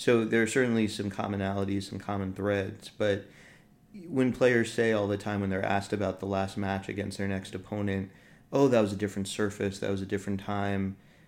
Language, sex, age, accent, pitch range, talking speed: English, male, 30-49, American, 95-110 Hz, 200 wpm